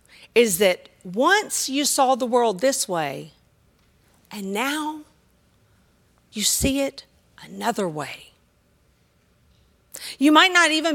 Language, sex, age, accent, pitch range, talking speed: English, female, 40-59, American, 180-280 Hz, 110 wpm